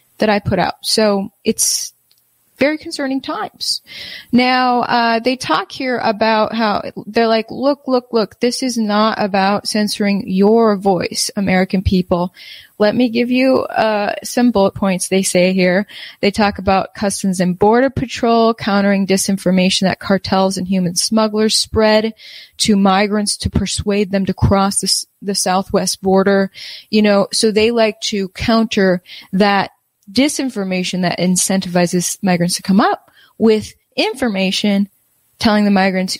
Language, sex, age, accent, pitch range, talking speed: English, female, 20-39, American, 195-230 Hz, 145 wpm